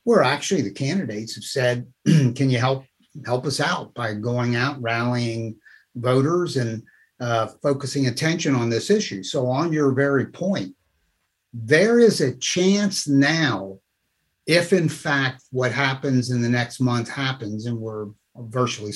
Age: 60-79